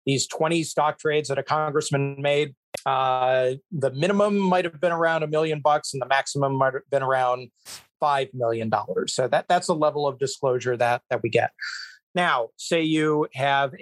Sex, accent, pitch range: male, American, 130-155 Hz